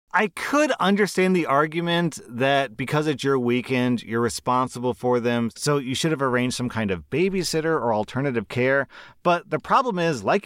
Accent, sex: American, male